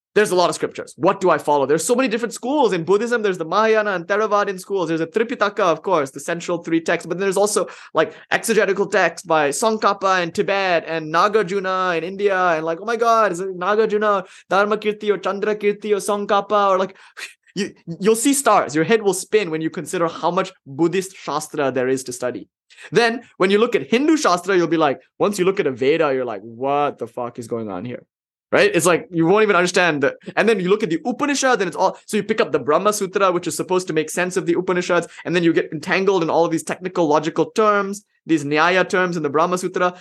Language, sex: English, male